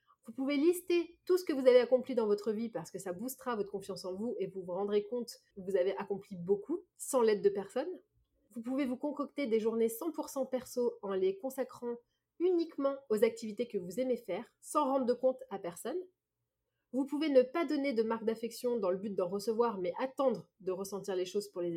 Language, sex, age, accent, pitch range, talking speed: French, female, 30-49, French, 200-270 Hz, 220 wpm